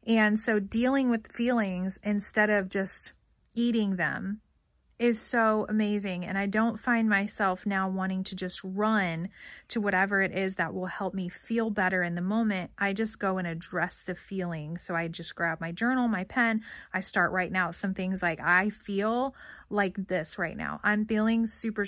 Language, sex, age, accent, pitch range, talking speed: English, female, 30-49, American, 185-225 Hz, 185 wpm